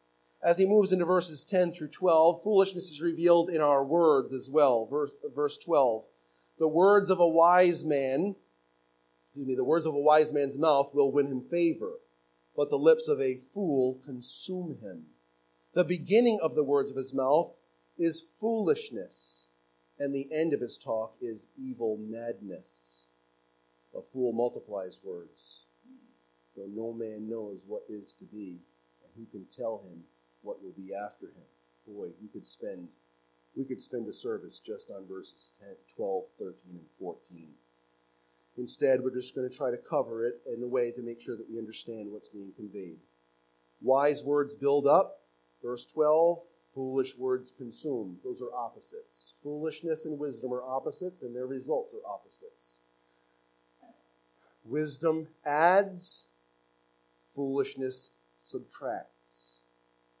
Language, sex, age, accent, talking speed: English, male, 40-59, American, 150 wpm